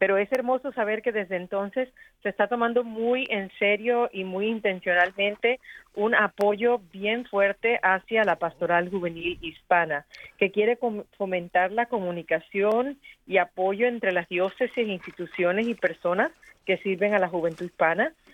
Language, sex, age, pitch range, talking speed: Spanish, female, 40-59, 180-220 Hz, 145 wpm